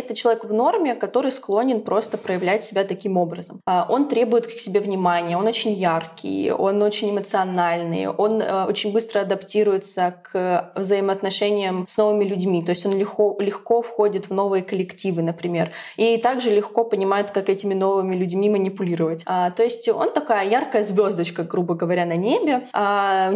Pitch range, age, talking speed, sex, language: 185-215 Hz, 20-39, 155 wpm, female, Russian